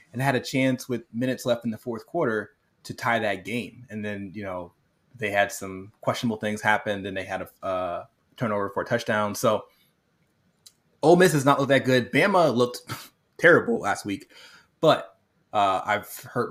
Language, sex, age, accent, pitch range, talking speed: English, male, 20-39, American, 100-120 Hz, 180 wpm